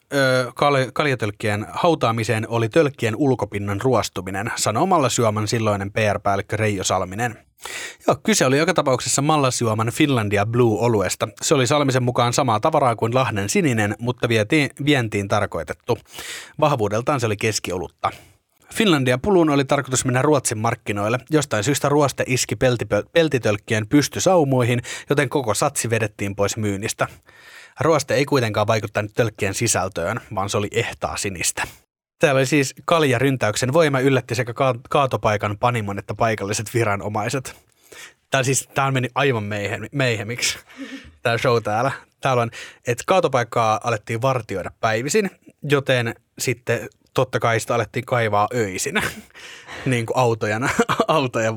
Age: 30-49